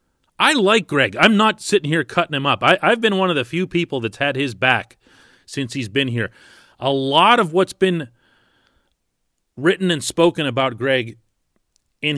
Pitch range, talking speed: 110-155 Hz, 175 wpm